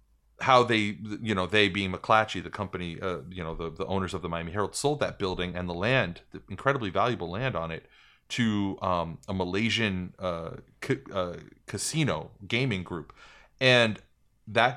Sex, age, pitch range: male, 30-49, 90-110 Hz